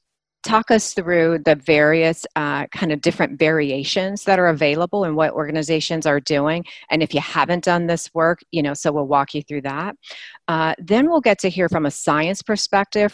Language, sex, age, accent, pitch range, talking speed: English, female, 40-59, American, 150-190 Hz, 195 wpm